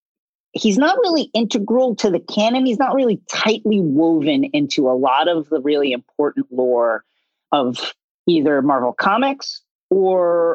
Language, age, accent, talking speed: English, 40-59, American, 140 wpm